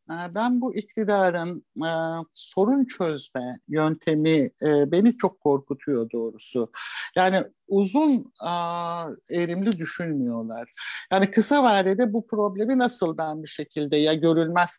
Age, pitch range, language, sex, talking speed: 60-79, 150-190 Hz, Turkish, male, 115 wpm